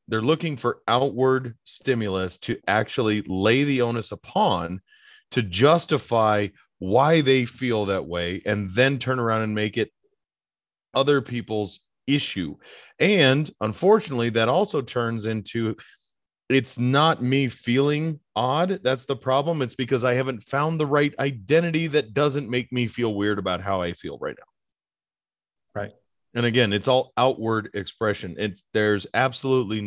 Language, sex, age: English, male, 30-49